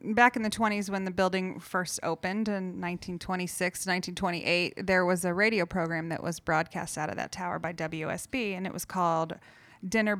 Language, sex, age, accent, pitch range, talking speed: English, female, 30-49, American, 170-195 Hz, 180 wpm